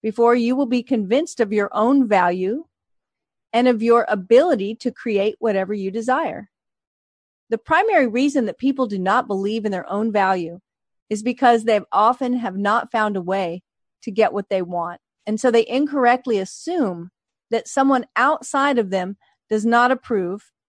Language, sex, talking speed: English, female, 165 wpm